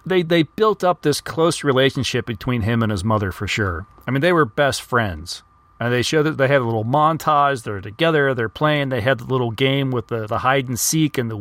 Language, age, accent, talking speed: English, 40-59, American, 240 wpm